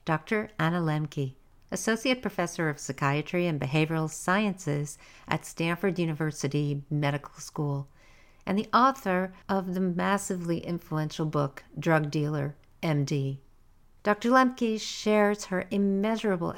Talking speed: 110 wpm